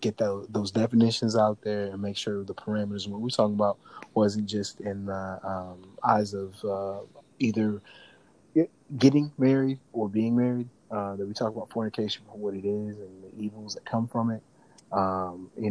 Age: 30-49